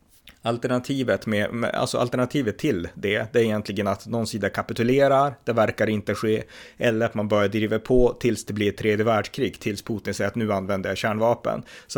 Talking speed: 185 wpm